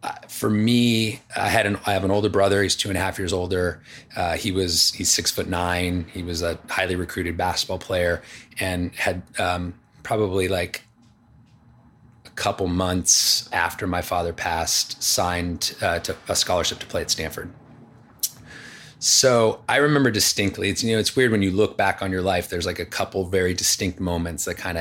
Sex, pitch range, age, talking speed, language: male, 90-110 Hz, 30-49, 185 wpm, English